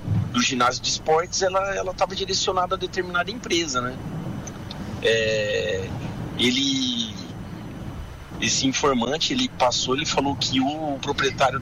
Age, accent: 40-59, Brazilian